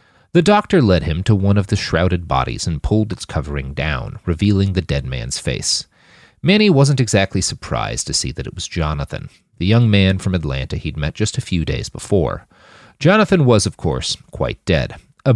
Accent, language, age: American, English, 40-59